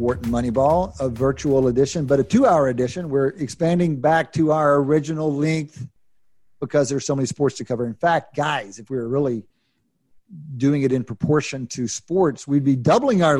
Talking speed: 180 wpm